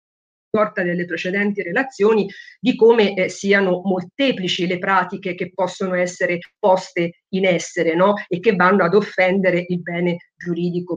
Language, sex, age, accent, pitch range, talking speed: Italian, female, 50-69, native, 180-230 Hz, 135 wpm